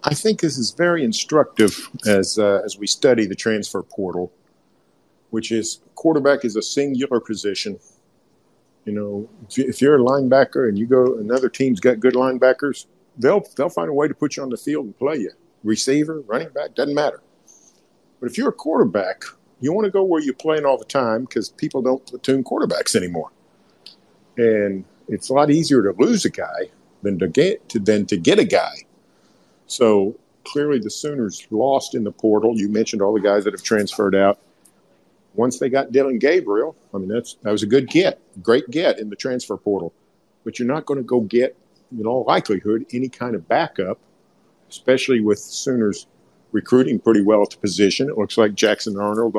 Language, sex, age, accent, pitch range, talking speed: English, male, 50-69, American, 105-140 Hz, 190 wpm